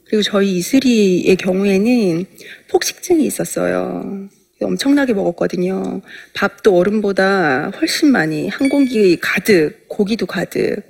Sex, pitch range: female, 190-245 Hz